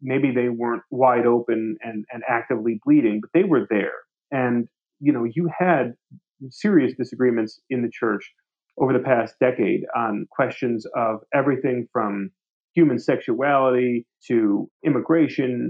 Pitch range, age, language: 120-150 Hz, 30-49, English